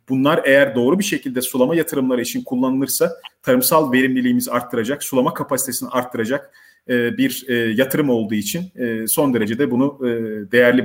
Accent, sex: native, male